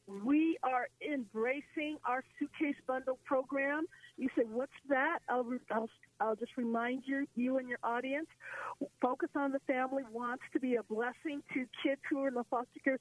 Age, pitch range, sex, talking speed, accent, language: 50-69, 235-280 Hz, female, 175 wpm, American, English